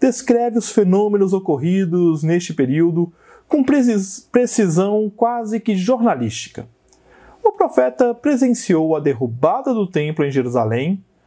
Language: Portuguese